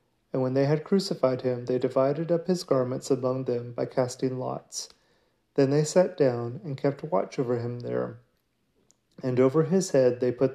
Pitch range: 125-150 Hz